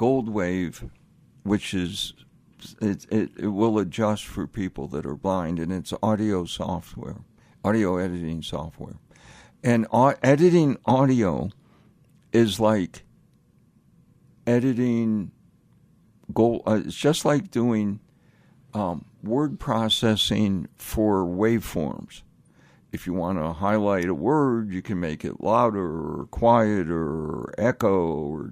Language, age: English, 60-79